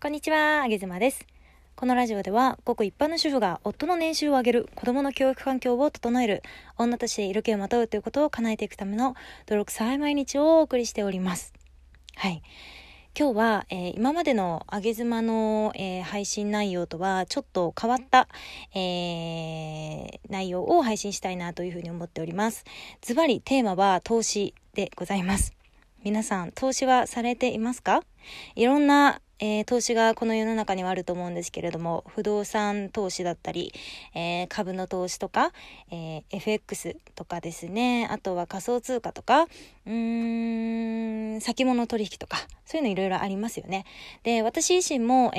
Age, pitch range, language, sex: 20-39, 190-255 Hz, Japanese, female